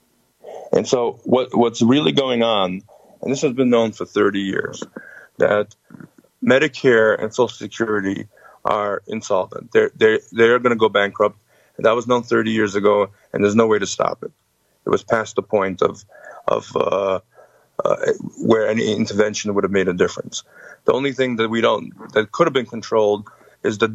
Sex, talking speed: male, 180 wpm